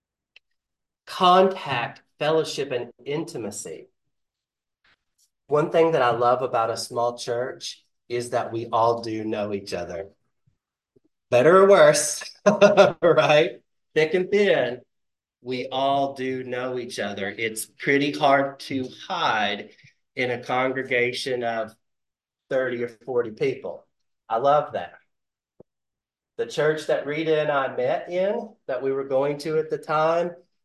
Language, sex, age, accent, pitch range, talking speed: English, male, 30-49, American, 120-155 Hz, 130 wpm